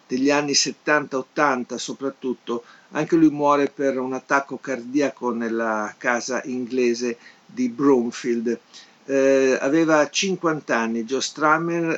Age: 50-69